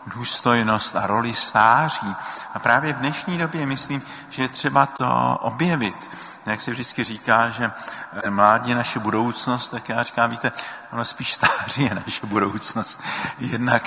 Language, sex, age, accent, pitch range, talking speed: Czech, male, 50-69, native, 105-125 Hz, 145 wpm